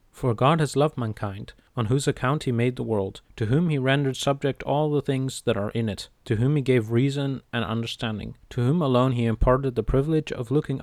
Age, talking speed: 30-49, 220 wpm